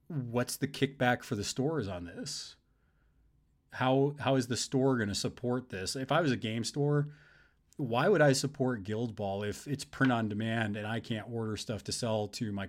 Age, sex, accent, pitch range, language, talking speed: 30-49, male, American, 105-130 Hz, English, 195 wpm